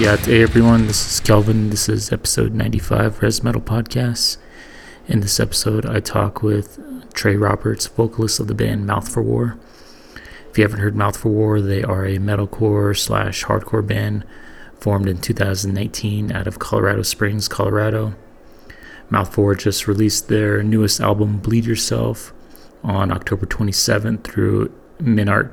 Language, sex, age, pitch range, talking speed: English, male, 30-49, 95-110 Hz, 155 wpm